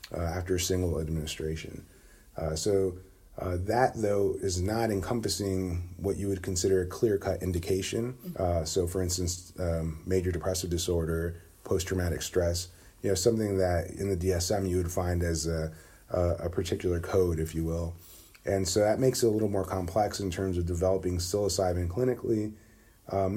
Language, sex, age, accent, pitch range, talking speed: English, male, 30-49, American, 85-95 Hz, 170 wpm